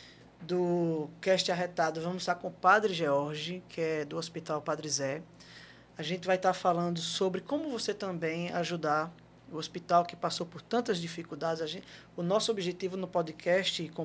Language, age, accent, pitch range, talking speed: Portuguese, 20-39, Brazilian, 160-190 Hz, 170 wpm